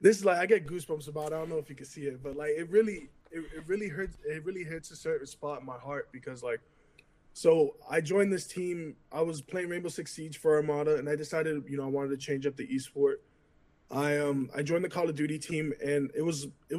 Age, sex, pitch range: 20-39, male, 140-175 Hz